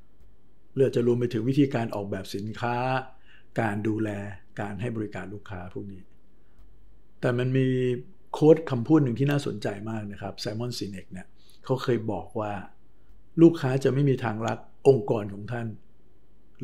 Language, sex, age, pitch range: Thai, male, 60-79, 105-130 Hz